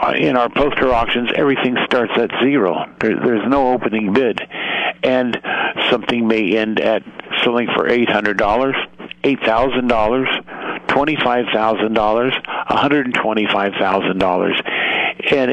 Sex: male